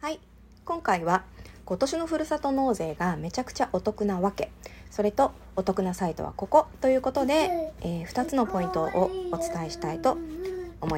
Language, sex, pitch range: Japanese, female, 190-305 Hz